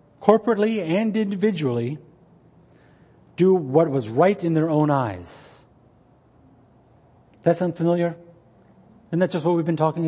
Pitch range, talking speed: 115-165 Hz, 120 wpm